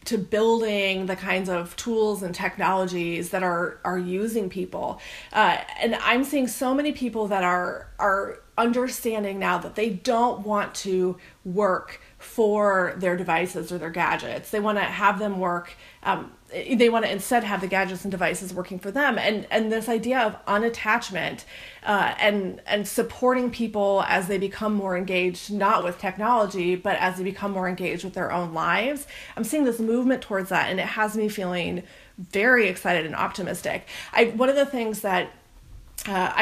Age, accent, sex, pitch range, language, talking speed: 30-49, American, female, 185-230 Hz, English, 175 wpm